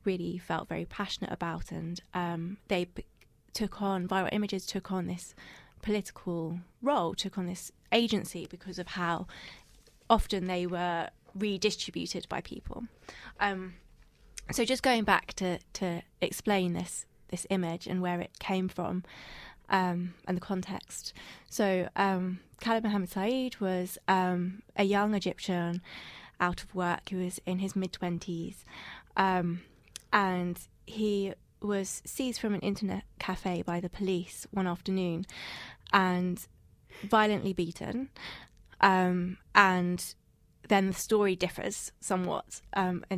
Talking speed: 130 wpm